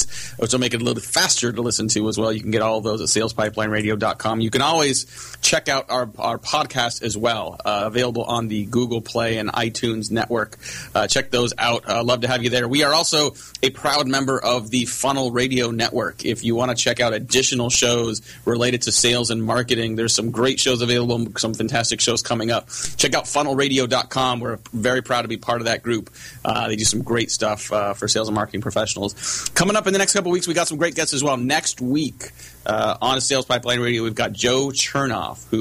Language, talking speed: English, 230 wpm